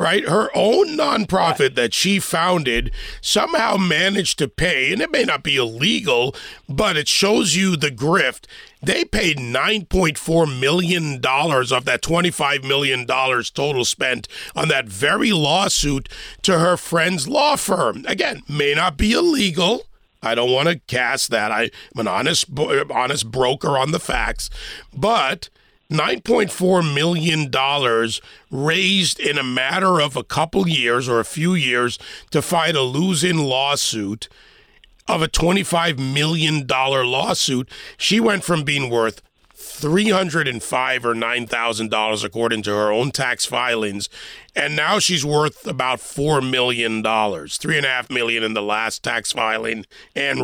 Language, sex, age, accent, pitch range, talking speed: English, male, 40-59, American, 120-180 Hz, 150 wpm